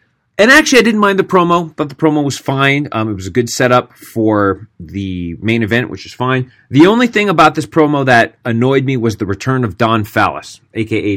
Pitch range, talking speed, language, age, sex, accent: 100-125 Hz, 220 wpm, English, 30-49, male, American